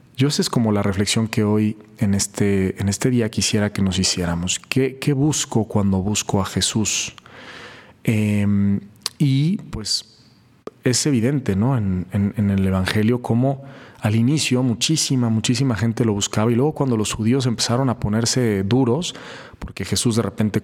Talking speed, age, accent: 165 wpm, 40-59, Mexican